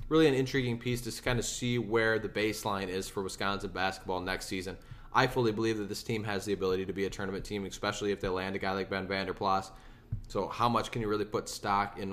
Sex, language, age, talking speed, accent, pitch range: male, English, 20-39, 250 wpm, American, 95-110 Hz